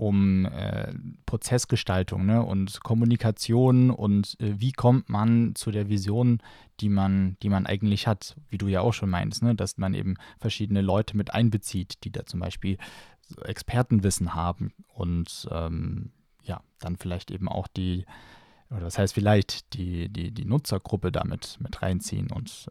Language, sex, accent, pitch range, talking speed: German, male, German, 100-125 Hz, 160 wpm